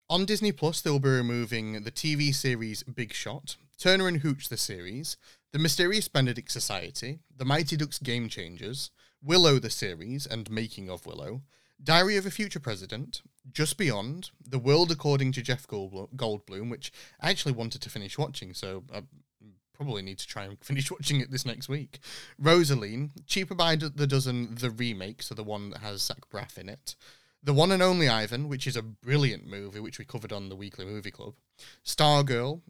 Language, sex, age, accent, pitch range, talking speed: English, male, 30-49, British, 115-155 Hz, 185 wpm